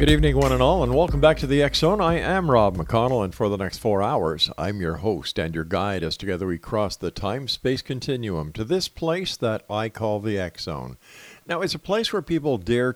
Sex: male